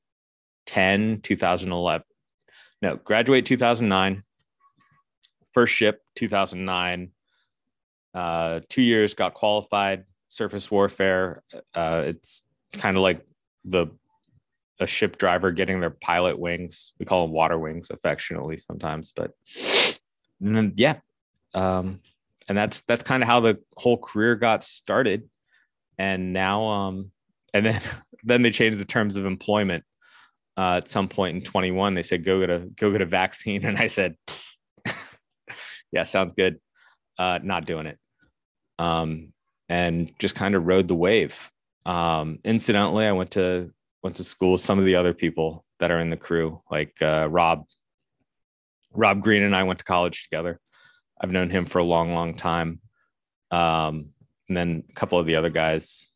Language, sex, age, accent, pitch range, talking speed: English, male, 20-39, American, 85-100 Hz, 155 wpm